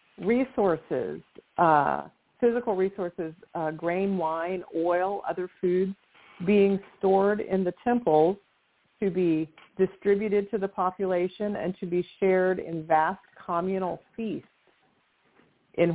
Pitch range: 160-195 Hz